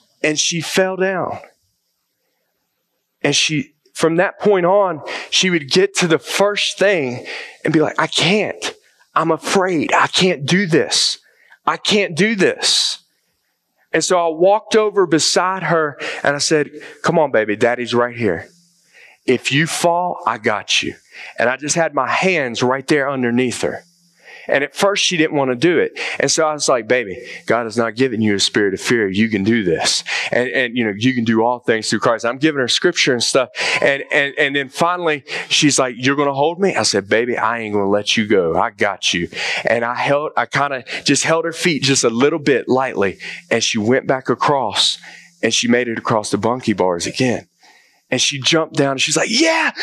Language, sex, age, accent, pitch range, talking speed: English, male, 30-49, American, 125-190 Hz, 205 wpm